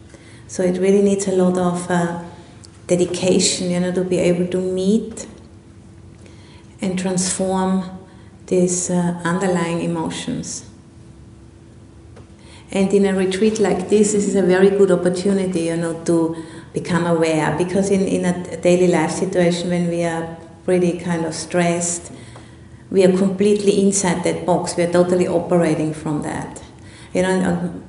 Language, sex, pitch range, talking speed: English, female, 170-185 Hz, 145 wpm